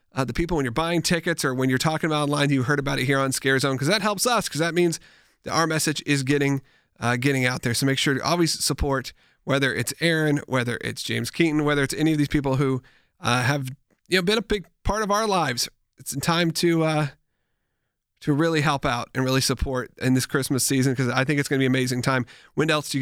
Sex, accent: male, American